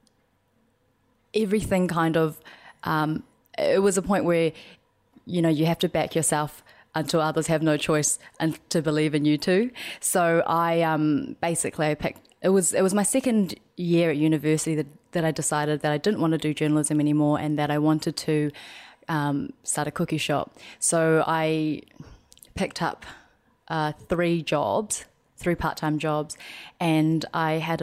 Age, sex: 20-39, female